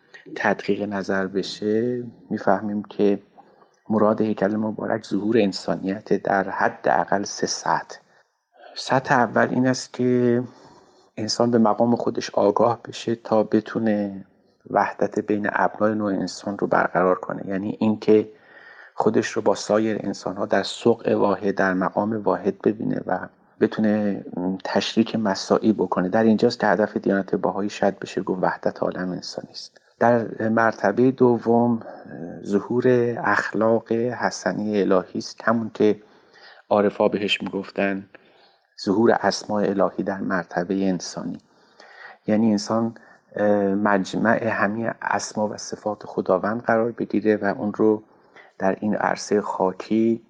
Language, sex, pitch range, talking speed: Persian, male, 100-115 Hz, 125 wpm